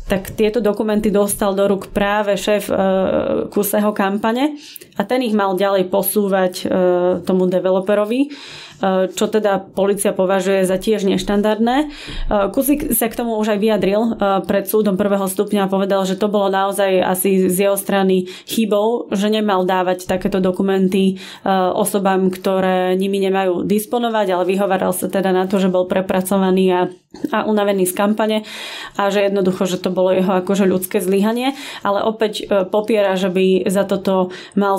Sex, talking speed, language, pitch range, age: female, 150 wpm, Slovak, 190-215 Hz, 20-39